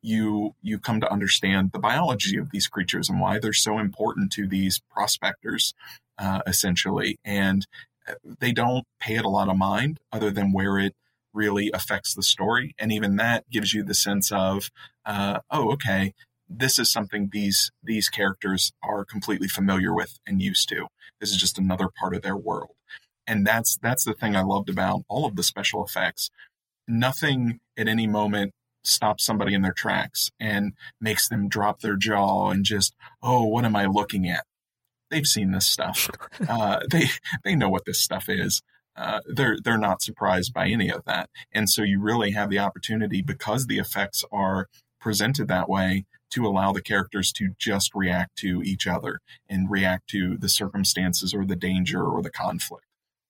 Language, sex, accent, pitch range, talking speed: English, male, American, 95-110 Hz, 180 wpm